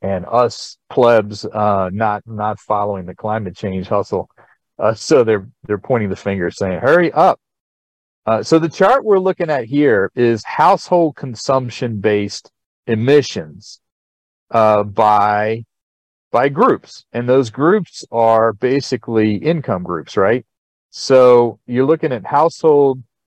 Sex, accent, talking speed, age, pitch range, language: male, American, 130 wpm, 40-59, 105-135 Hz, English